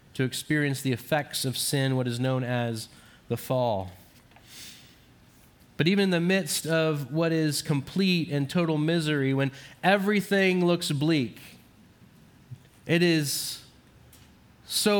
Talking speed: 125 wpm